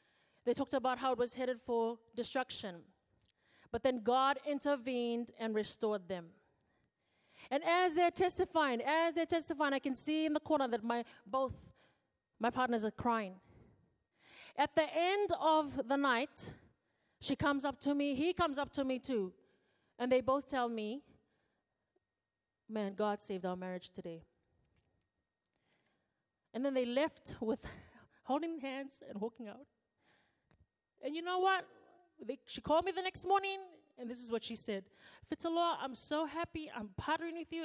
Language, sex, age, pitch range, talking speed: English, female, 30-49, 230-310 Hz, 155 wpm